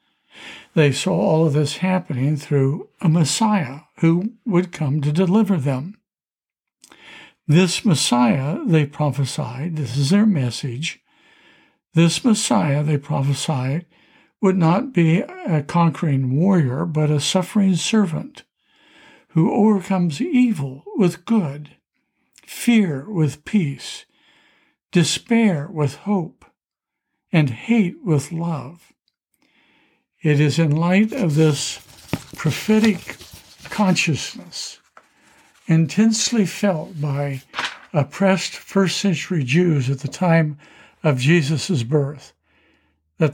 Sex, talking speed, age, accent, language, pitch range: male, 100 wpm, 60-79, American, English, 145-195 Hz